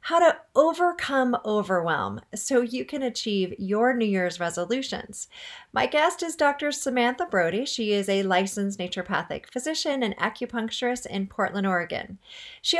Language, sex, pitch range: English, female, 195-275 Hz